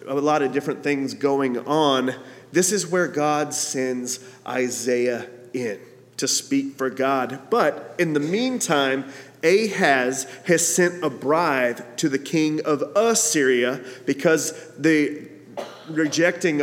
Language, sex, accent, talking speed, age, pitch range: English, male, American, 125 wpm, 30-49, 140-175 Hz